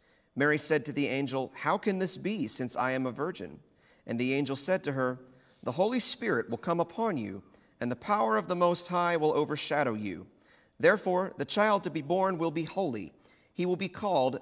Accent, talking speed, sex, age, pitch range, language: American, 210 wpm, male, 40-59, 125-175 Hz, English